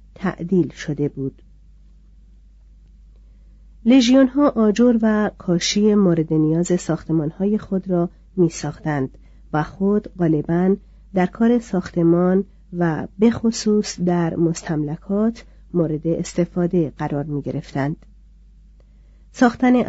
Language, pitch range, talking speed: Persian, 160-200 Hz, 90 wpm